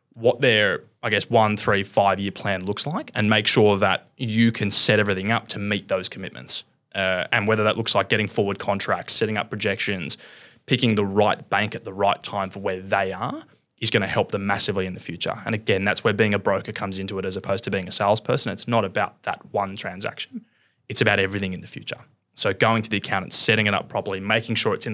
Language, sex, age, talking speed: English, male, 20-39, 235 wpm